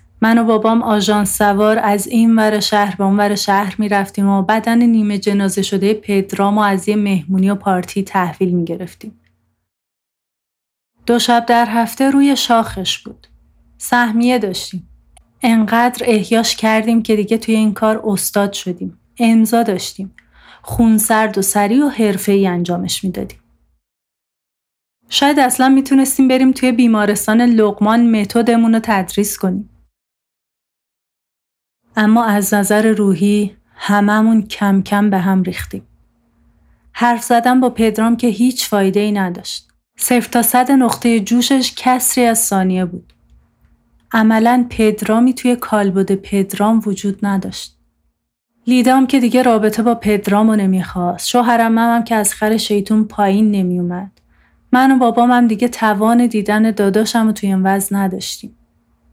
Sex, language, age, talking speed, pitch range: female, Persian, 30-49, 130 wpm, 195-235 Hz